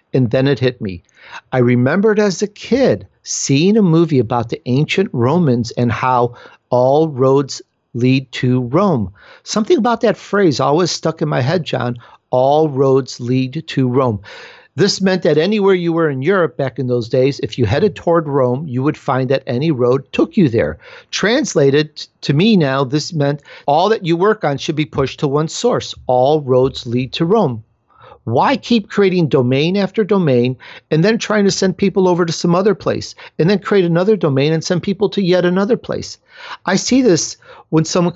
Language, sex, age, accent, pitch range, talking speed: English, male, 50-69, American, 130-185 Hz, 190 wpm